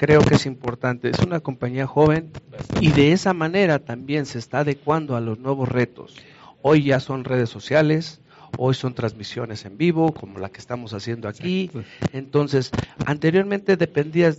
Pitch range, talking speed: 125-165 Hz, 165 wpm